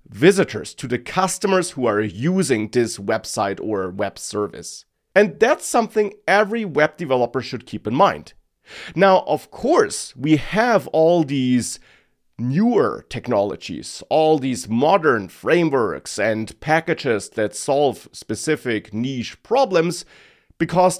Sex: male